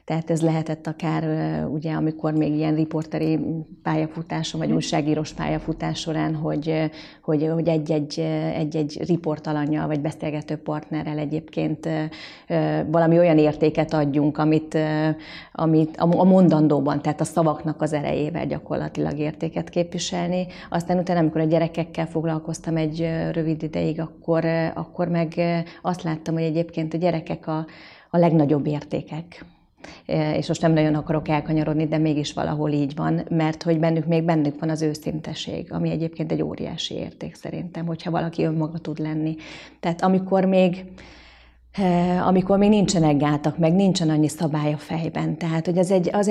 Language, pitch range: Hungarian, 155-165 Hz